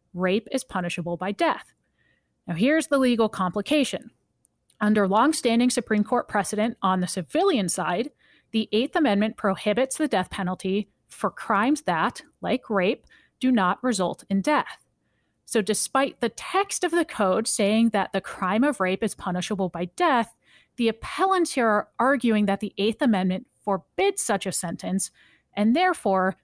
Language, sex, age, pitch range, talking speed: English, female, 30-49, 190-255 Hz, 155 wpm